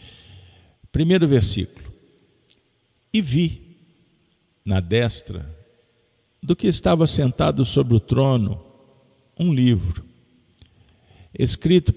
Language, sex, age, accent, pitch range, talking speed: Portuguese, male, 50-69, Brazilian, 95-125 Hz, 80 wpm